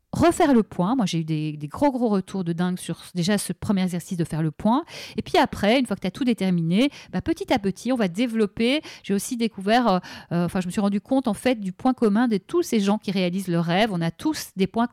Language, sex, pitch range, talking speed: French, female, 185-240 Hz, 275 wpm